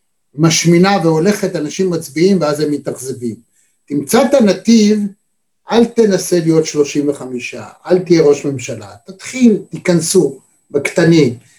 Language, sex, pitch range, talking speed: Hebrew, male, 150-205 Hz, 115 wpm